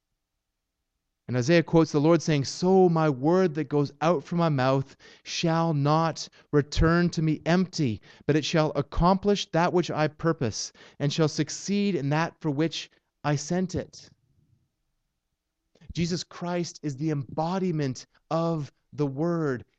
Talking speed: 145 wpm